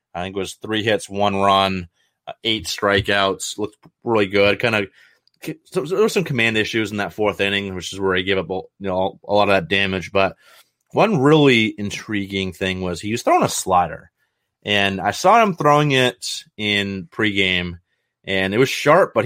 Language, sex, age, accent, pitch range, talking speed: English, male, 30-49, American, 95-120 Hz, 200 wpm